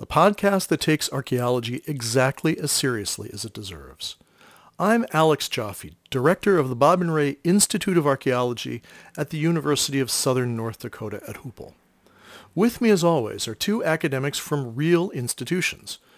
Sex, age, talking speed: male, 40-59, 155 wpm